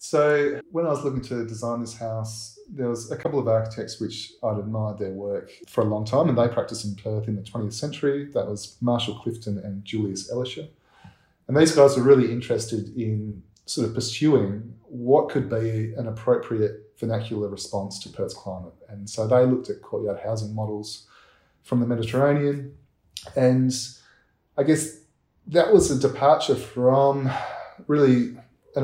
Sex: male